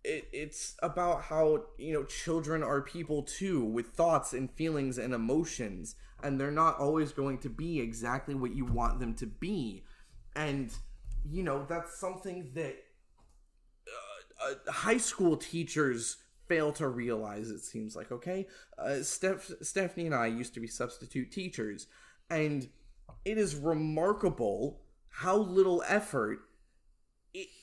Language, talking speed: English, 140 wpm